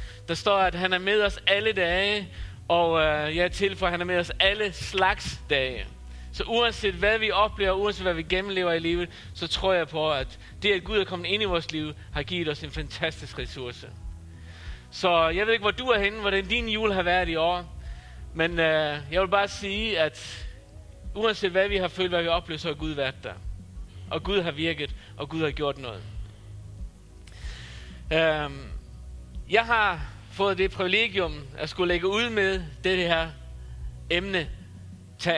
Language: Danish